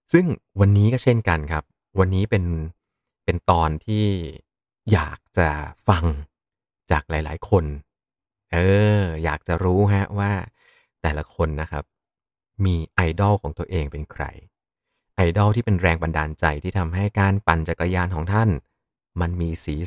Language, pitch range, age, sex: Thai, 80-105 Hz, 30-49, male